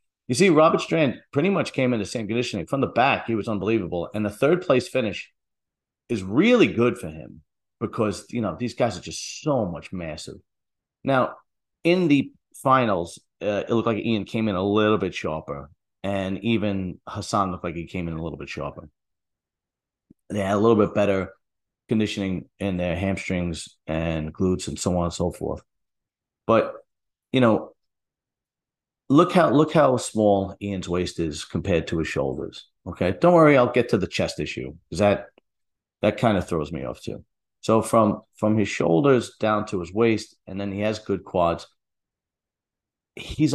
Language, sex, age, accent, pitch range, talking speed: English, male, 30-49, American, 95-115 Hz, 180 wpm